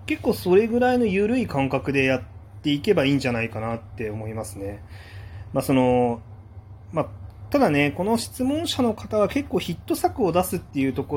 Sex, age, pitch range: male, 20-39, 110-155 Hz